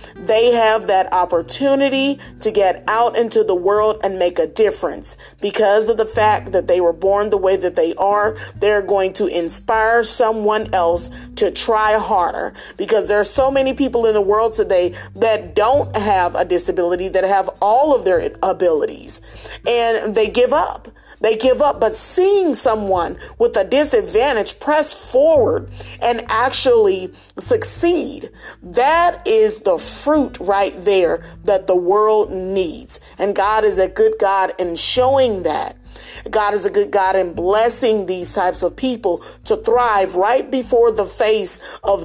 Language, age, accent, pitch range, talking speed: English, 40-59, American, 190-240 Hz, 160 wpm